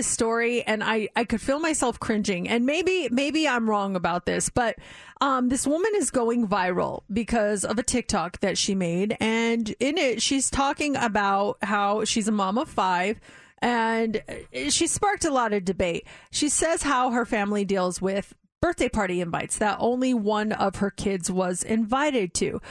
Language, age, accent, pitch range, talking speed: English, 30-49, American, 205-255 Hz, 175 wpm